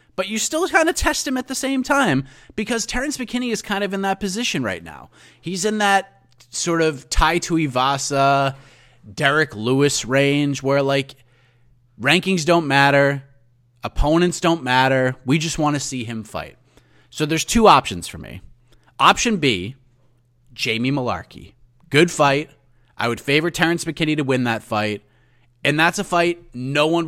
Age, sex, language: 30-49, male, English